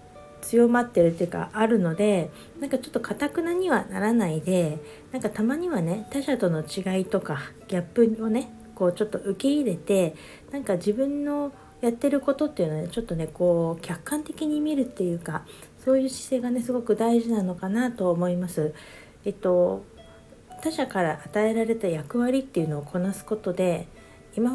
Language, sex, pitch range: Japanese, female, 180-245 Hz